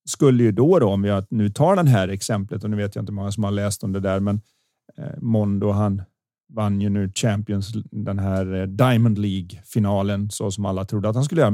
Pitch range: 105-145 Hz